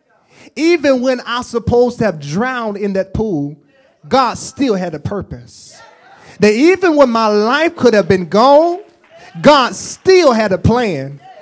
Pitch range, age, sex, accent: 180-255 Hz, 30-49, male, American